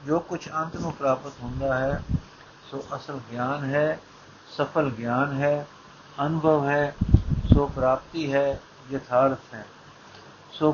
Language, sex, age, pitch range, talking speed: Punjabi, male, 60-79, 130-155 Hz, 115 wpm